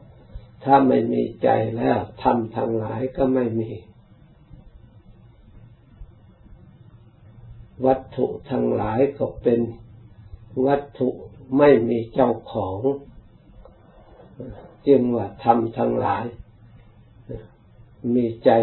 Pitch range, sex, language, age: 110-125 Hz, male, Thai, 60-79